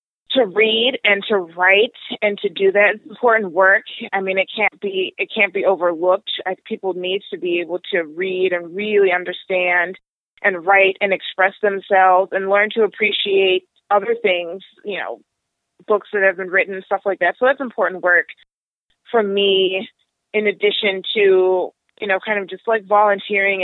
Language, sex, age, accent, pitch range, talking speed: English, female, 30-49, American, 185-210 Hz, 175 wpm